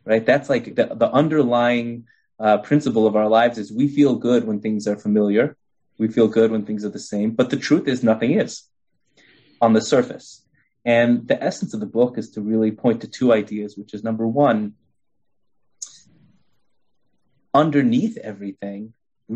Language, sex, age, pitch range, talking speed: English, male, 20-39, 105-120 Hz, 175 wpm